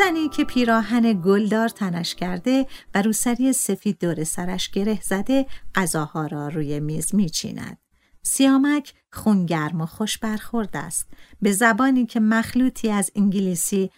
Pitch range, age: 175-225 Hz, 50-69